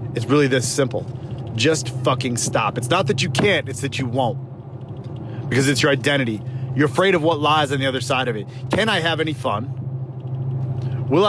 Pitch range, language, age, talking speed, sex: 125-140 Hz, English, 30-49, 195 wpm, male